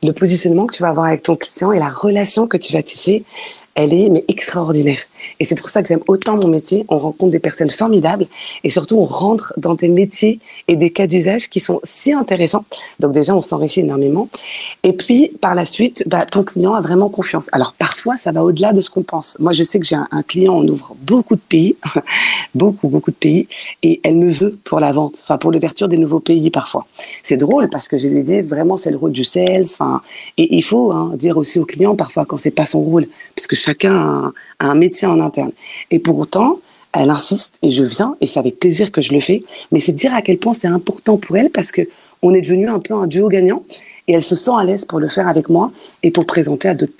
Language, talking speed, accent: French, 245 wpm, French